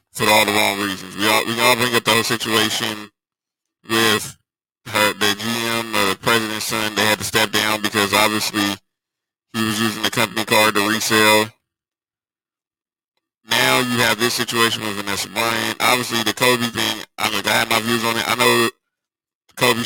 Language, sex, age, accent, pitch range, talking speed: English, male, 20-39, American, 105-115 Hz, 185 wpm